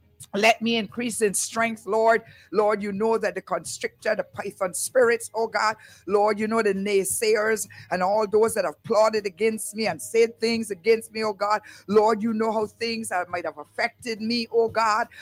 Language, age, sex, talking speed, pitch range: English, 50-69, female, 195 wpm, 210-230 Hz